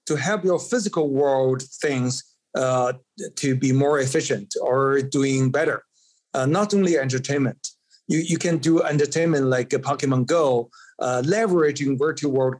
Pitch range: 130-165 Hz